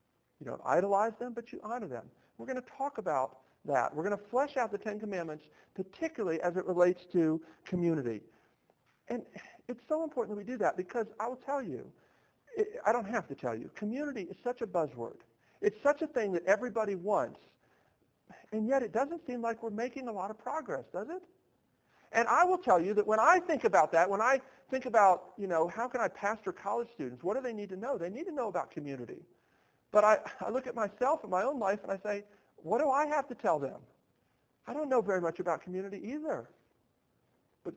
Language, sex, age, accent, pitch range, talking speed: English, male, 50-69, American, 180-245 Hz, 220 wpm